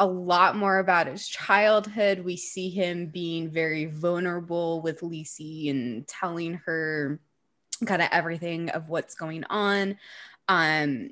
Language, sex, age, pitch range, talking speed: English, female, 20-39, 160-190 Hz, 135 wpm